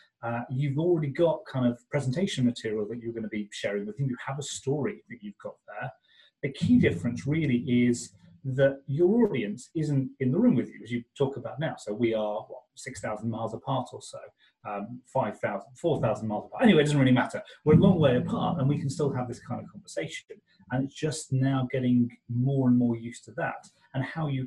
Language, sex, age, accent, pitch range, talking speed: English, male, 30-49, British, 115-145 Hz, 220 wpm